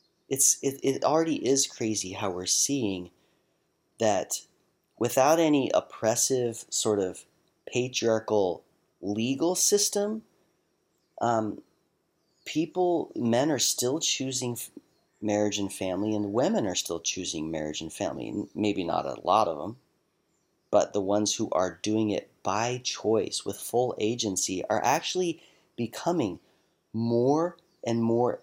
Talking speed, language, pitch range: 125 wpm, English, 100-135 Hz